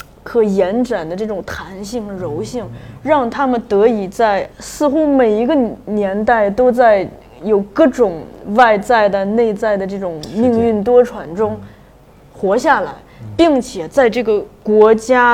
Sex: female